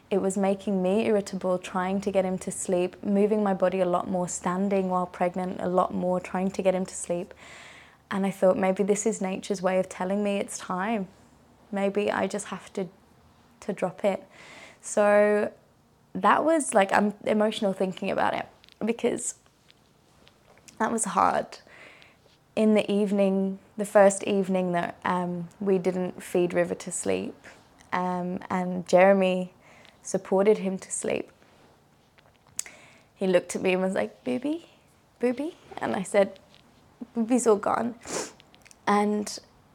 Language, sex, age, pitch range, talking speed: English, female, 20-39, 185-215 Hz, 150 wpm